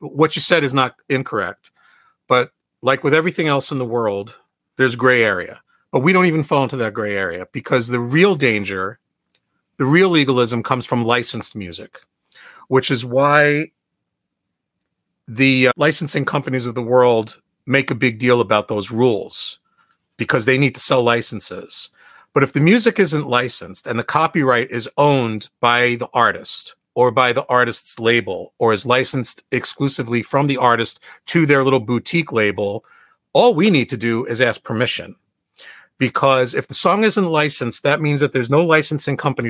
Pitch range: 120-145 Hz